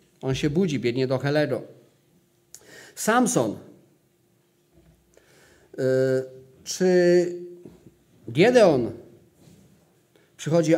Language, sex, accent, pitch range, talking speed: Polish, male, native, 155-185 Hz, 60 wpm